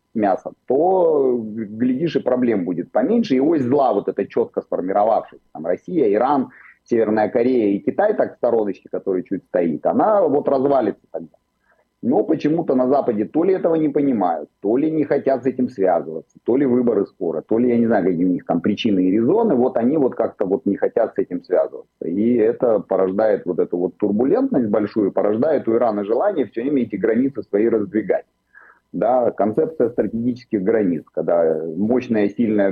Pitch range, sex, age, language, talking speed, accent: 105-130 Hz, male, 30-49, Russian, 180 wpm, native